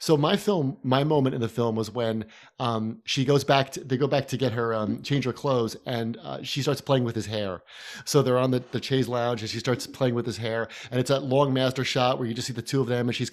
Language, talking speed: English, 285 wpm